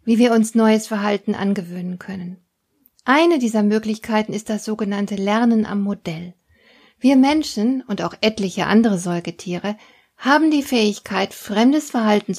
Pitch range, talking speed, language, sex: 200-245 Hz, 135 wpm, German, female